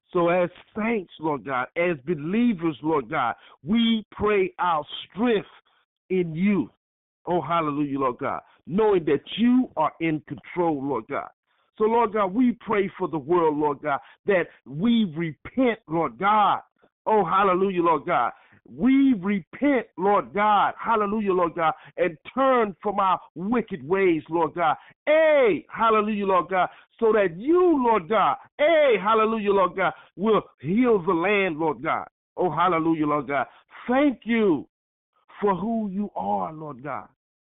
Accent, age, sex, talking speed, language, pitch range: American, 50-69, male, 150 wpm, English, 160-220 Hz